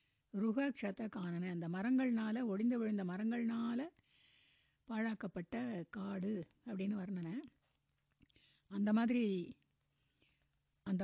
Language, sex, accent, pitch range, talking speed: Tamil, female, native, 200-270 Hz, 80 wpm